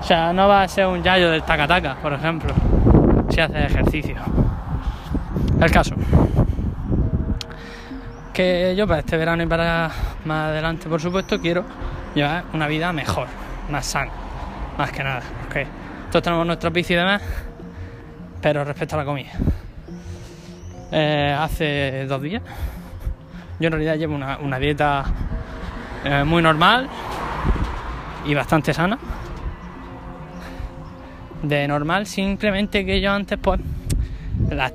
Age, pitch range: 20-39, 105-165 Hz